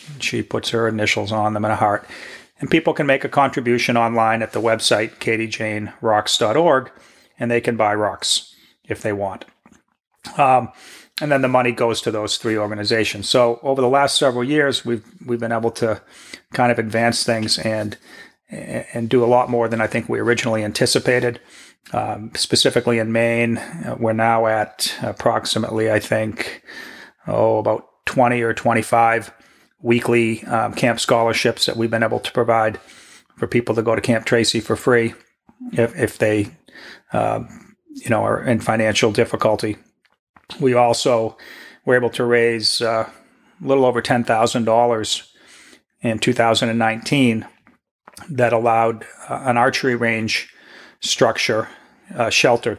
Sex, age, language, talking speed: male, 40-59, English, 150 wpm